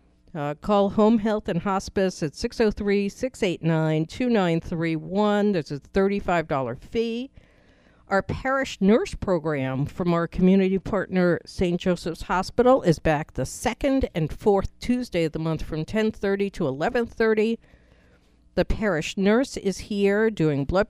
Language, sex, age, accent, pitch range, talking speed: English, female, 50-69, American, 150-210 Hz, 125 wpm